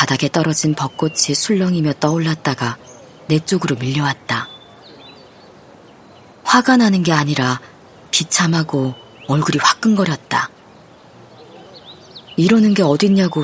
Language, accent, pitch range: Korean, native, 135-180 Hz